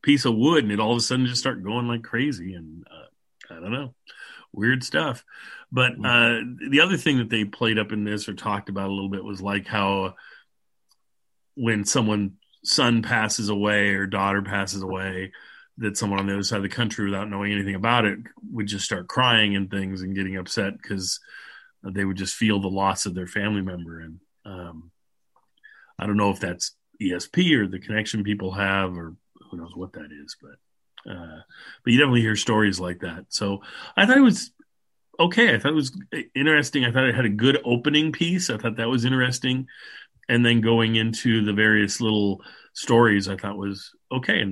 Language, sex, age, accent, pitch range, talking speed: English, male, 40-59, American, 100-120 Hz, 200 wpm